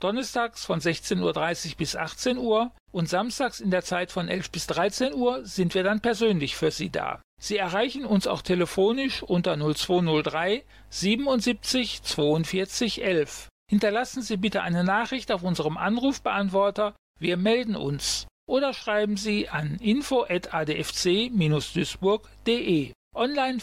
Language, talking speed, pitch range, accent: German, 130 wpm, 175-230 Hz, German